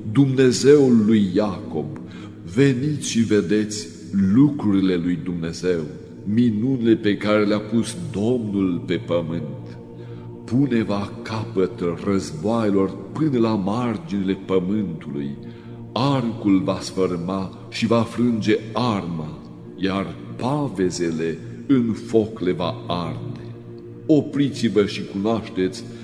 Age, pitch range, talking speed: 60-79, 95-125 Hz, 95 wpm